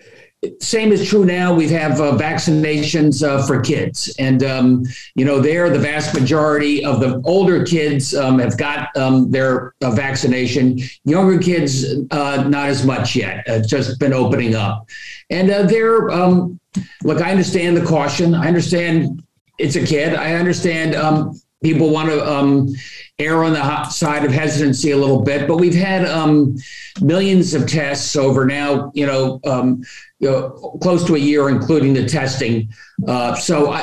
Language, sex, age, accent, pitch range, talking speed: English, male, 50-69, American, 130-155 Hz, 165 wpm